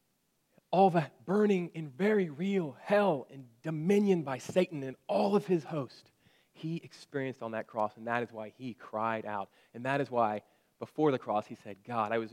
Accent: American